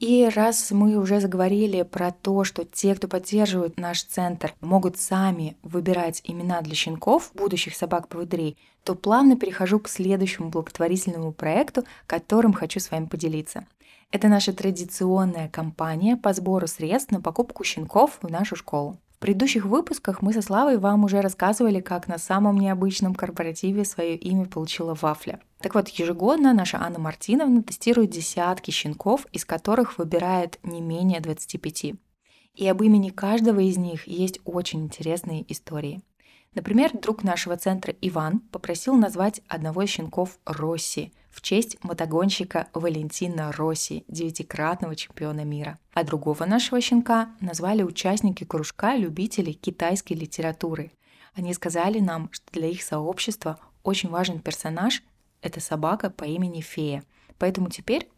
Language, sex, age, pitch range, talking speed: Russian, female, 20-39, 165-205 Hz, 140 wpm